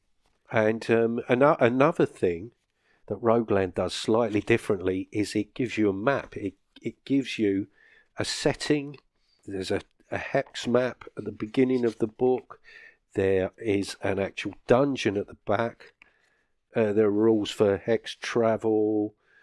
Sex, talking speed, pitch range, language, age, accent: male, 145 wpm, 100-115 Hz, English, 50-69, British